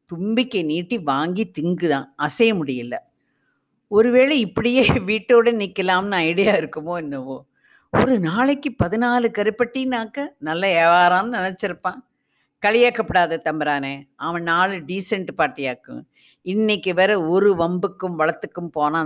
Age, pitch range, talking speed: 50-69, 160-235 Hz, 100 wpm